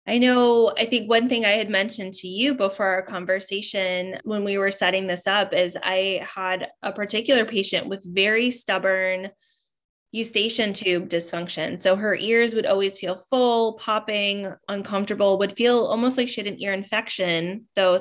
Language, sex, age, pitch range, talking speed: English, female, 20-39, 190-230 Hz, 170 wpm